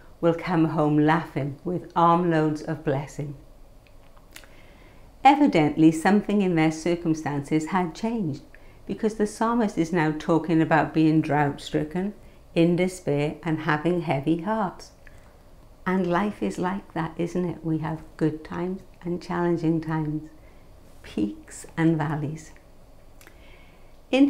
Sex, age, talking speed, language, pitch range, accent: female, 60-79, 120 wpm, English, 155-175 Hz, British